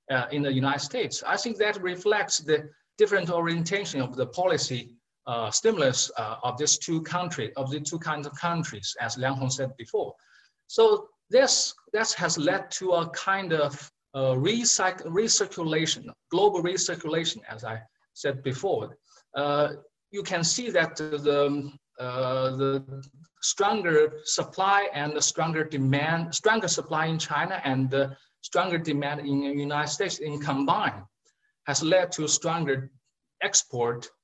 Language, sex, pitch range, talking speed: English, male, 135-175 Hz, 145 wpm